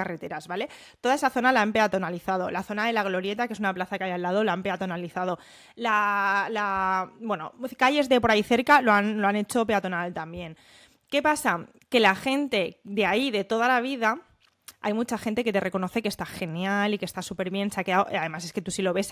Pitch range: 195-250 Hz